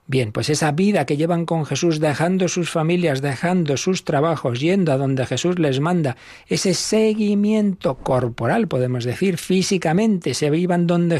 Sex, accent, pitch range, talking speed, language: male, Spanish, 135-180 Hz, 155 wpm, Spanish